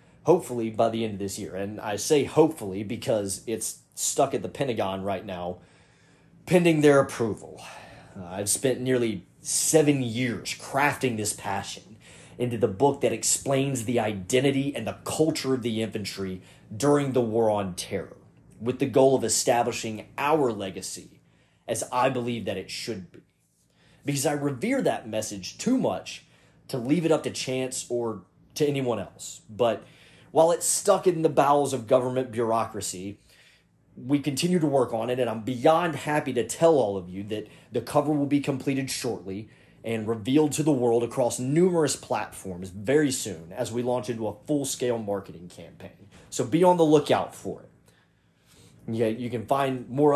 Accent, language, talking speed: American, English, 170 wpm